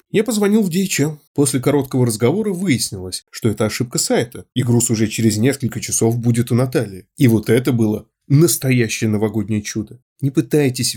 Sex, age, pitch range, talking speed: male, 20-39, 110-150 Hz, 165 wpm